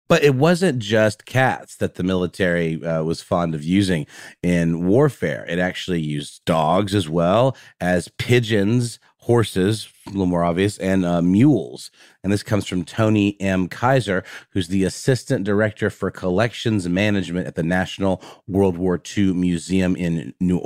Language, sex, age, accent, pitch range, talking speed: English, male, 30-49, American, 90-120 Hz, 155 wpm